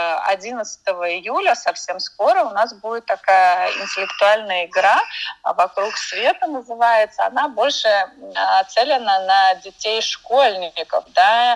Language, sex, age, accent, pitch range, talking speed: Russian, female, 20-39, native, 180-245 Hz, 105 wpm